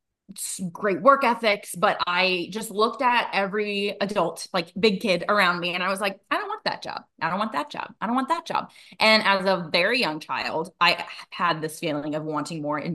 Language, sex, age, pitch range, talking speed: English, female, 20-39, 160-210 Hz, 225 wpm